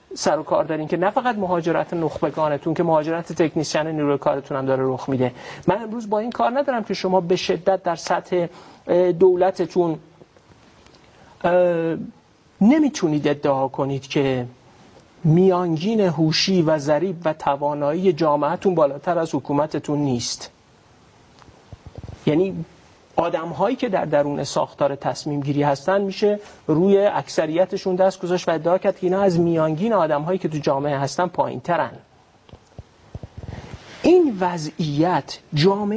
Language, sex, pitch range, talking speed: Persian, male, 150-200 Hz, 125 wpm